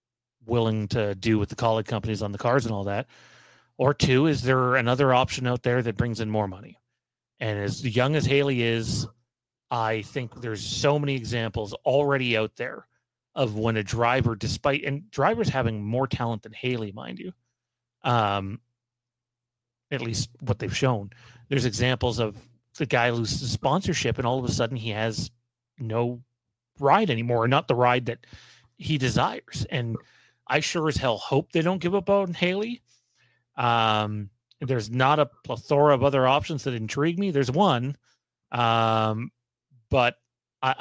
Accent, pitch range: American, 115-135 Hz